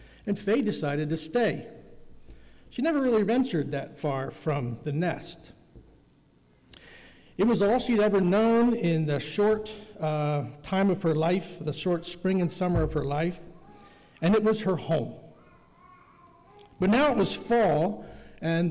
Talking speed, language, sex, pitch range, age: 150 wpm, English, male, 140-195 Hz, 60-79